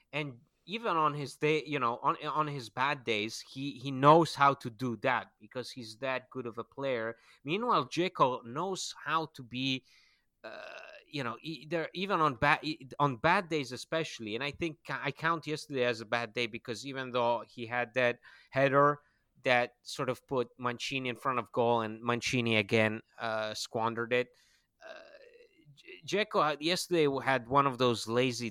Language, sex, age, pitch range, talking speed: English, male, 30-49, 120-150 Hz, 175 wpm